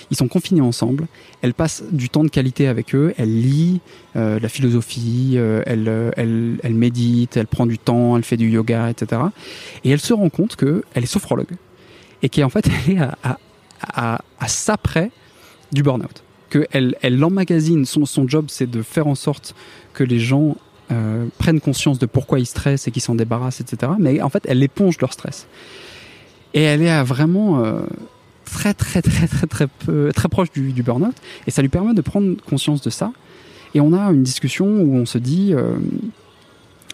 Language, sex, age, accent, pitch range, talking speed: French, male, 20-39, French, 120-160 Hz, 195 wpm